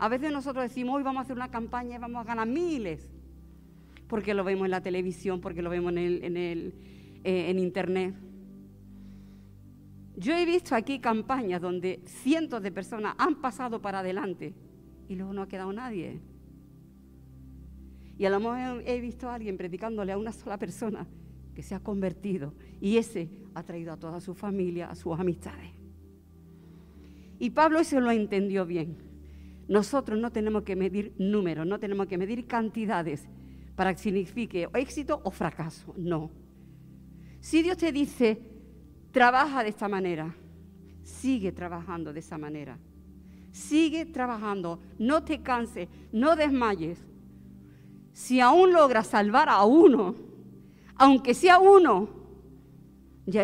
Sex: female